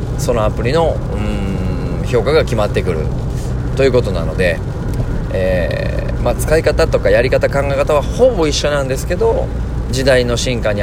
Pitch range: 120-155 Hz